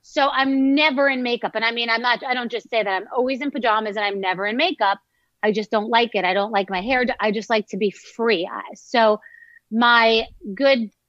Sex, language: female, English